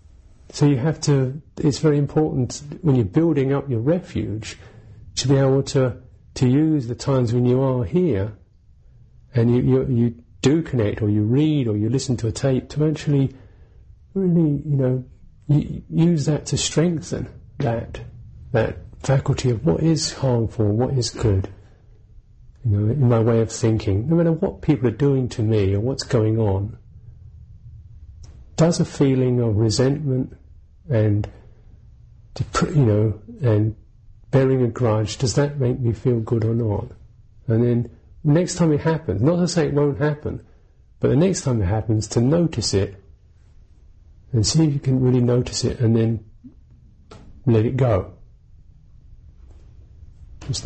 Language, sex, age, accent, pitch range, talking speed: English, male, 50-69, British, 105-135 Hz, 160 wpm